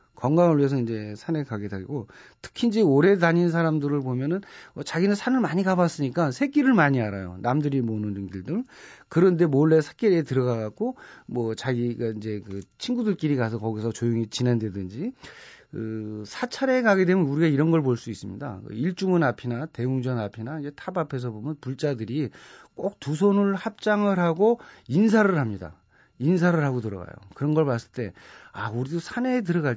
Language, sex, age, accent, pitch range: Korean, male, 40-59, native, 115-180 Hz